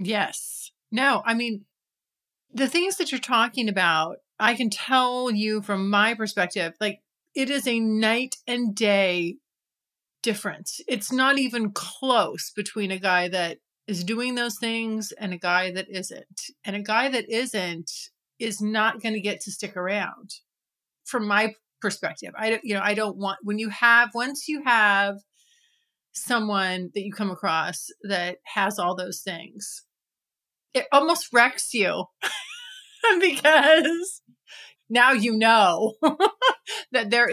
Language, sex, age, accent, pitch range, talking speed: English, female, 30-49, American, 195-240 Hz, 145 wpm